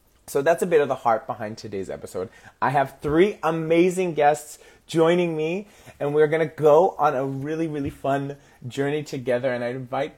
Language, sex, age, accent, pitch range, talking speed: English, male, 30-49, American, 115-165 Hz, 185 wpm